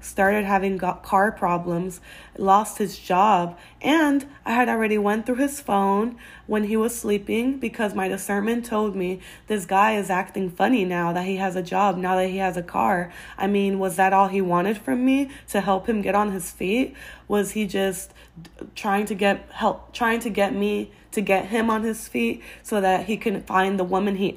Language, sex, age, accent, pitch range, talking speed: English, female, 20-39, American, 185-215 Hz, 200 wpm